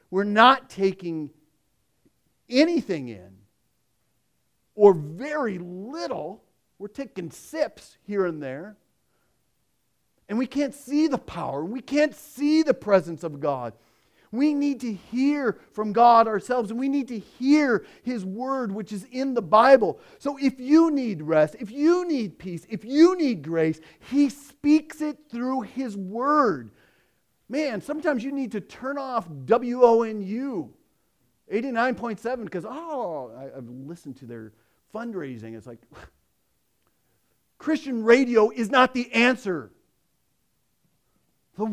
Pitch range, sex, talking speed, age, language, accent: 165-270 Hz, male, 135 wpm, 40-59, English, American